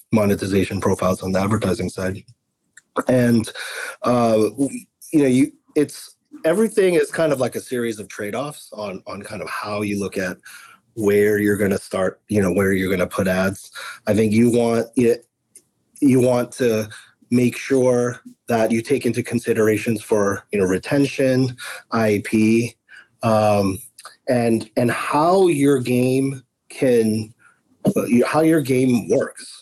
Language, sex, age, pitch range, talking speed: English, male, 30-49, 100-125 Hz, 145 wpm